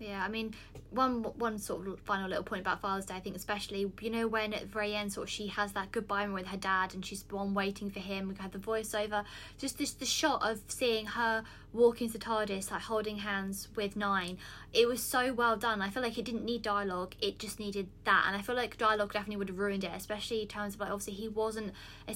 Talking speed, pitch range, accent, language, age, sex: 255 wpm, 195-225 Hz, British, English, 20-39, female